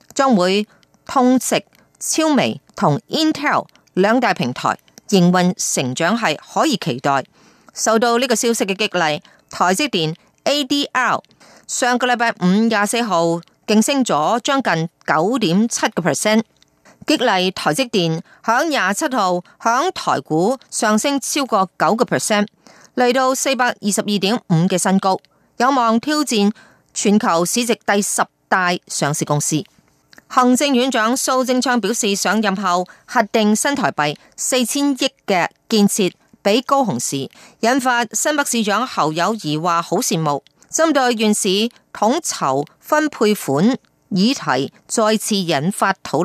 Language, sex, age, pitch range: Chinese, female, 30-49, 185-250 Hz